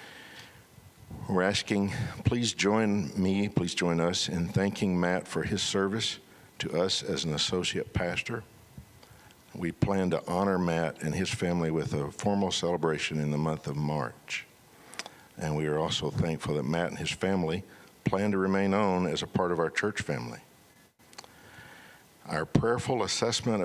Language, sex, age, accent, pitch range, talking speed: English, male, 60-79, American, 85-105 Hz, 155 wpm